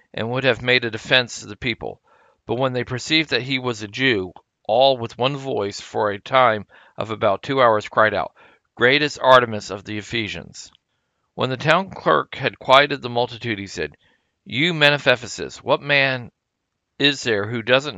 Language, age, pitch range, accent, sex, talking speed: English, 50-69, 115-135 Hz, American, male, 190 wpm